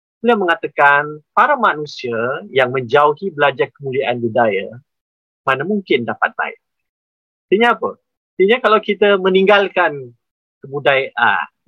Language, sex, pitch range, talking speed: Malay, male, 130-190 Hz, 105 wpm